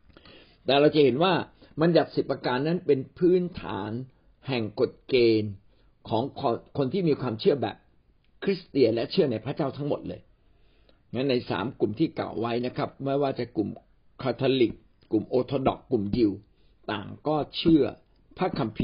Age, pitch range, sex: 60-79, 105-150 Hz, male